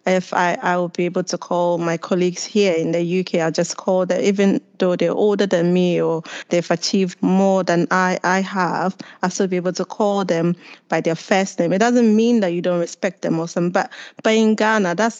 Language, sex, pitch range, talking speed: English, female, 180-215 Hz, 230 wpm